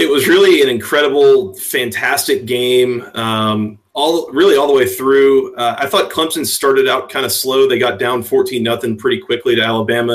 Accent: American